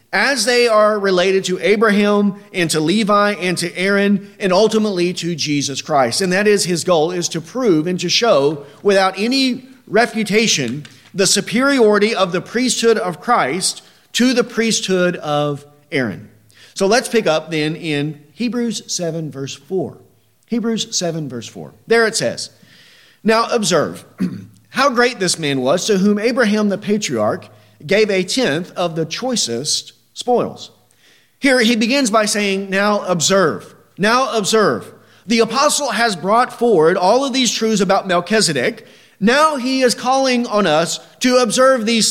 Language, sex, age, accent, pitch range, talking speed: English, male, 40-59, American, 180-245 Hz, 155 wpm